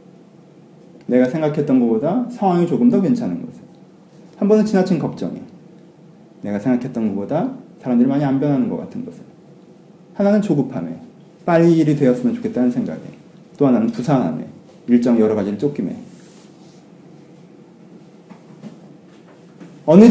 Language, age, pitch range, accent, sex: Korean, 40-59, 155-195 Hz, native, male